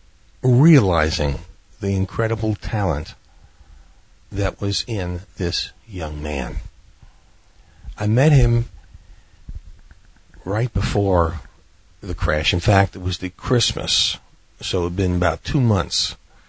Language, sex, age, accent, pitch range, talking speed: English, male, 60-79, American, 85-110 Hz, 110 wpm